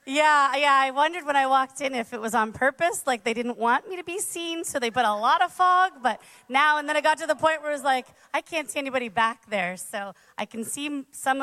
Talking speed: 275 wpm